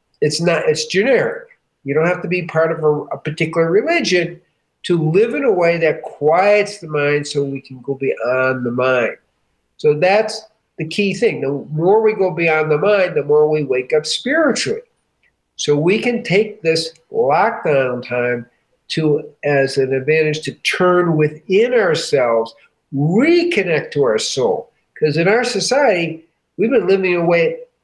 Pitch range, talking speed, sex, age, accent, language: 145-205 Hz, 170 wpm, male, 50-69, American, English